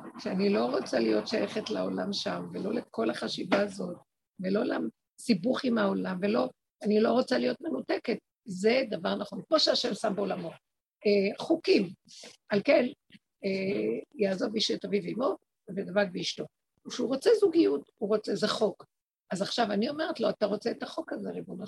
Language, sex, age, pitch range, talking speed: Hebrew, female, 50-69, 210-300 Hz, 165 wpm